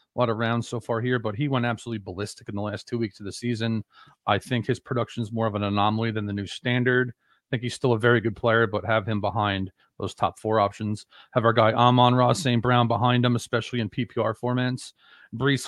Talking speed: 240 wpm